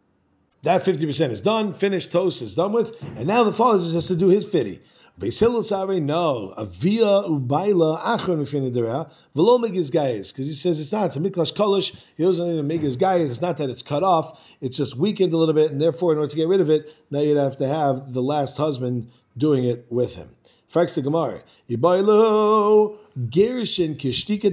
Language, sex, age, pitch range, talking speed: English, male, 40-59, 145-185 Hz, 190 wpm